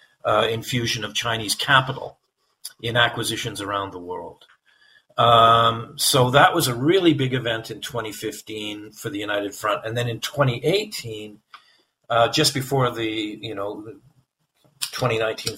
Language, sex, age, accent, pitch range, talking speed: English, male, 50-69, American, 110-145 Hz, 125 wpm